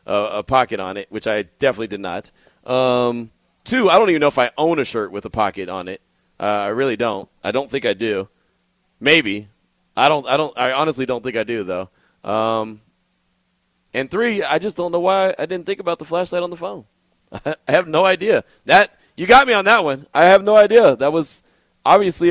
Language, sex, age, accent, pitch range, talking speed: English, male, 30-49, American, 125-175 Hz, 230 wpm